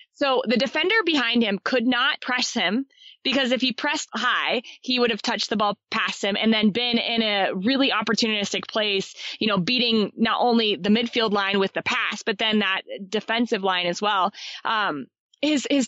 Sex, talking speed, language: female, 195 wpm, English